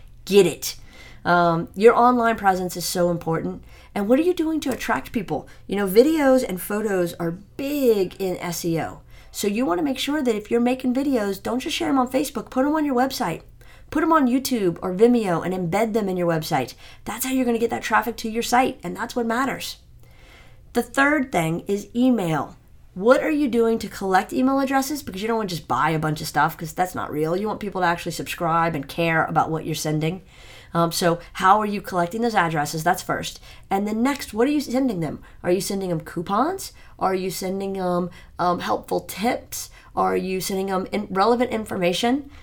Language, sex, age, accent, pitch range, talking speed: English, female, 40-59, American, 175-240 Hz, 215 wpm